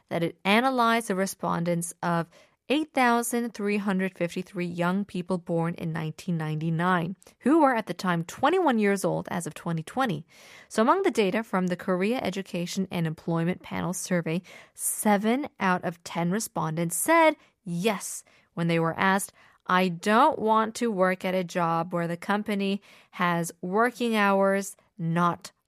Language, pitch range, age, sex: Korean, 180-250 Hz, 20-39, female